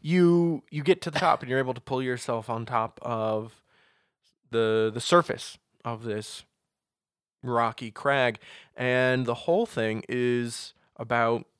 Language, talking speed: English, 145 wpm